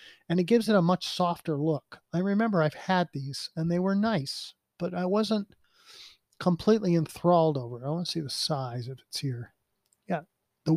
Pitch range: 145-180 Hz